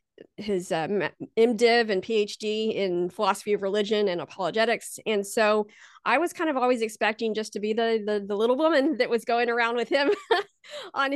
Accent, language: American, English